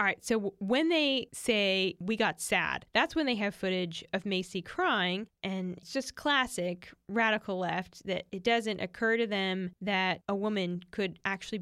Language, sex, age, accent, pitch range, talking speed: English, female, 10-29, American, 185-220 Hz, 180 wpm